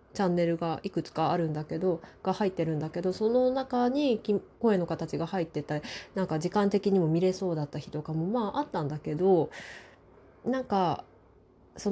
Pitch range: 170-250 Hz